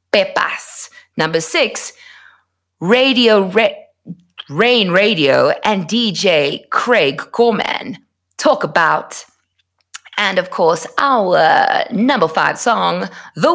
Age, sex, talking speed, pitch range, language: 30-49, female, 95 wpm, 200-280 Hz, English